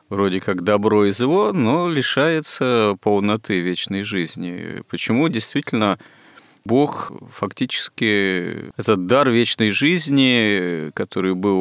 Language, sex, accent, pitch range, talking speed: Russian, male, native, 90-110 Hz, 105 wpm